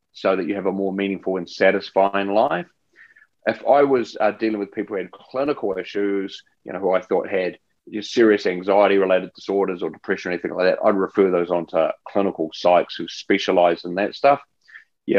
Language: English